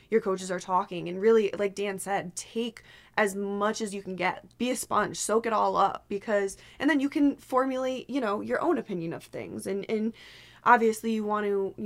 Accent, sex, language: American, female, English